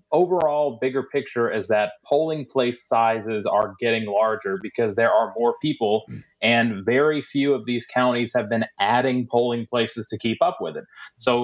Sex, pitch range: male, 110-130 Hz